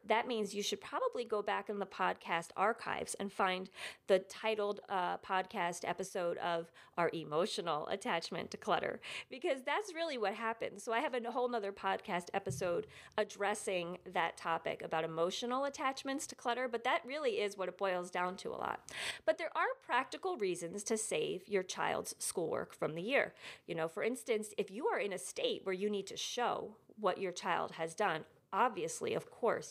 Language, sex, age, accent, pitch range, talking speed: English, female, 40-59, American, 180-240 Hz, 185 wpm